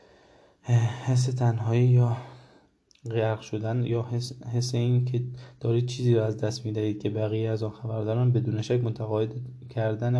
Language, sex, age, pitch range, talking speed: Persian, male, 20-39, 105-125 Hz, 155 wpm